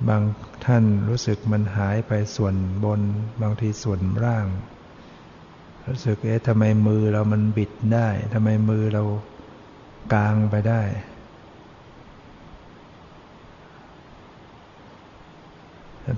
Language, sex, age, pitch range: Thai, male, 60-79, 105-115 Hz